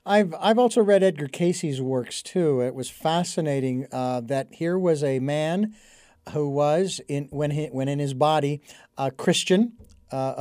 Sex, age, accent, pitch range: male, 50-69, American, 160-215 Hz